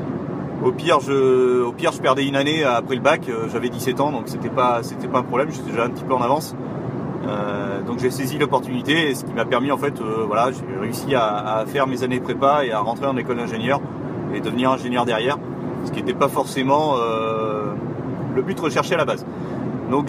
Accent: French